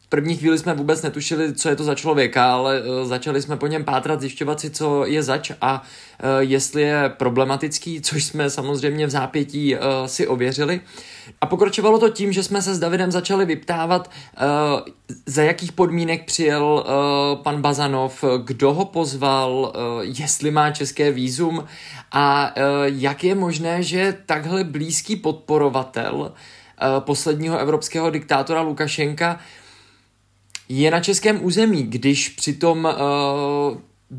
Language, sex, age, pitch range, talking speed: Czech, male, 20-39, 140-170 Hz, 135 wpm